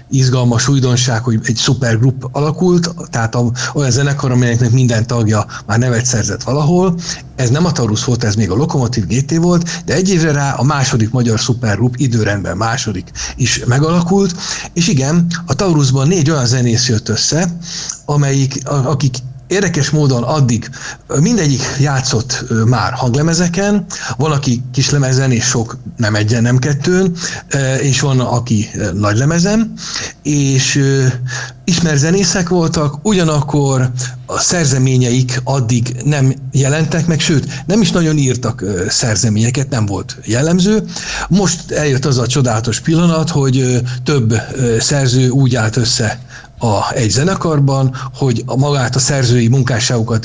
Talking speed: 130 wpm